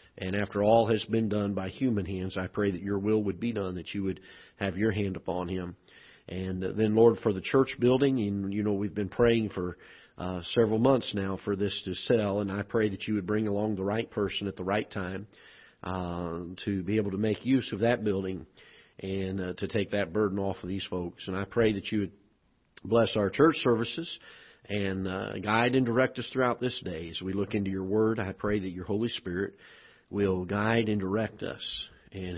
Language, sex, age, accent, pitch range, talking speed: English, male, 40-59, American, 95-115 Hz, 220 wpm